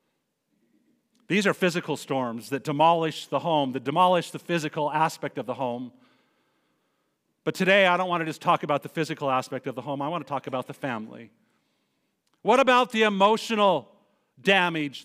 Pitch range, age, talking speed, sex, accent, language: 155-200 Hz, 50-69, 170 wpm, male, American, English